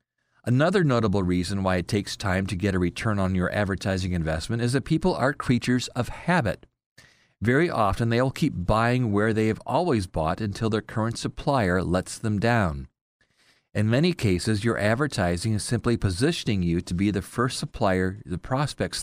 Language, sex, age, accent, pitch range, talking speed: English, male, 40-59, American, 95-125 Hz, 175 wpm